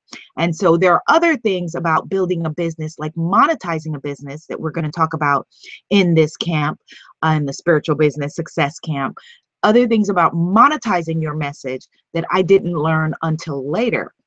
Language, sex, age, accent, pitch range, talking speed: English, female, 30-49, American, 165-220 Hz, 175 wpm